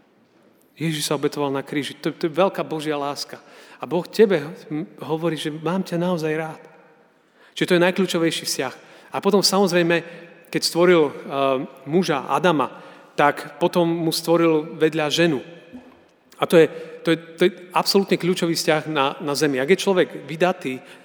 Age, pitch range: 40-59, 150-185 Hz